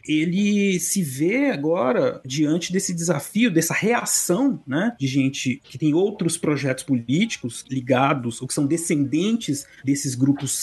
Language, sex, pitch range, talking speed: Portuguese, male, 130-170 Hz, 135 wpm